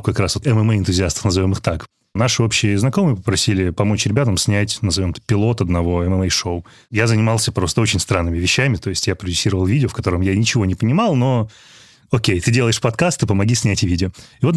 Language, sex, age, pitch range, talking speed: Russian, male, 30-49, 105-130 Hz, 185 wpm